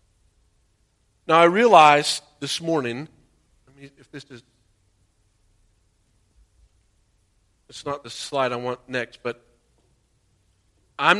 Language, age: English, 50-69